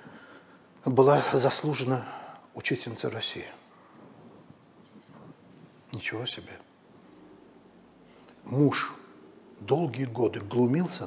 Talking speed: 55 wpm